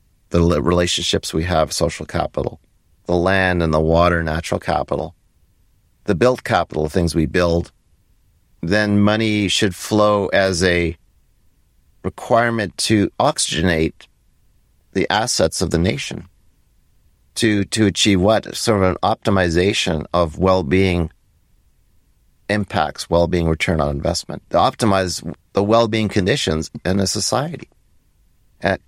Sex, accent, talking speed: male, American, 120 wpm